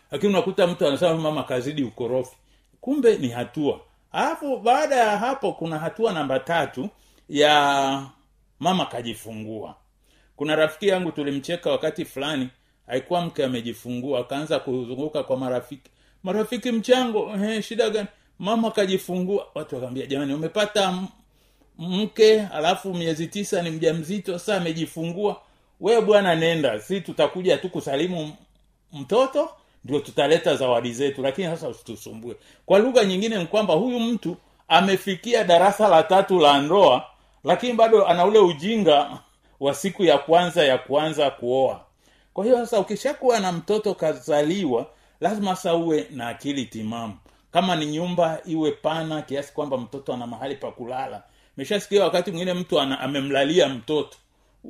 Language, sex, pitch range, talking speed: Swahili, male, 140-205 Hz, 135 wpm